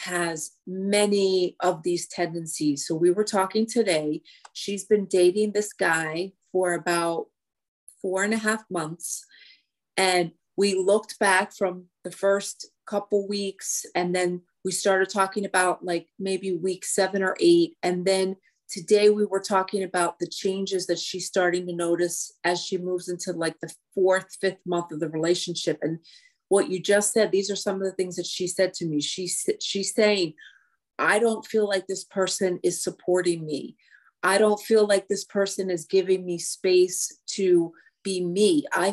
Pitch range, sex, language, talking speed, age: 175-205 Hz, female, English, 175 wpm, 30-49